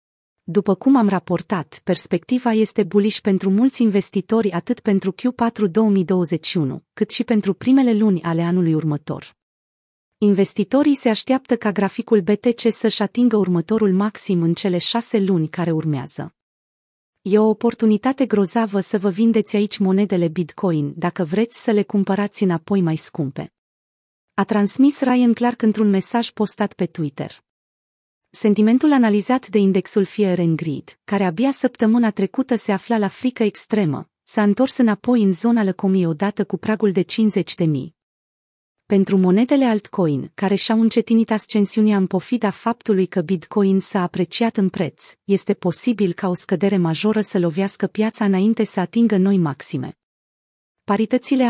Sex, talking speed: female, 145 wpm